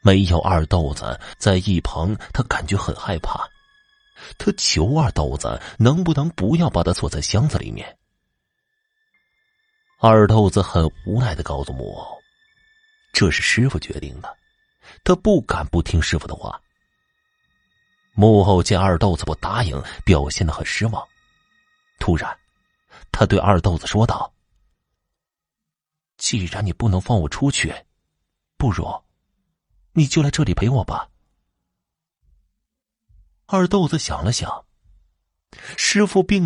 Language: Chinese